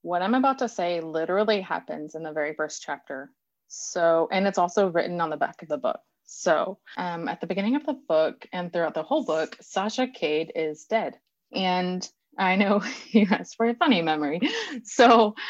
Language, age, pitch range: English, 20-39, 160-205 Hz